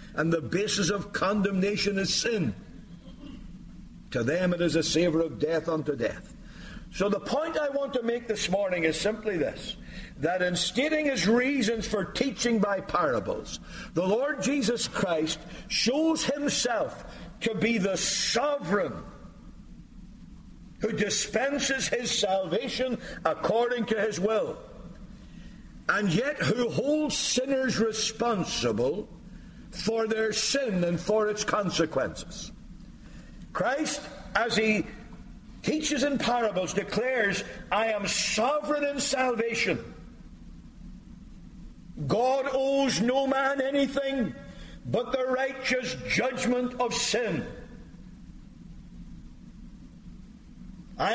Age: 60-79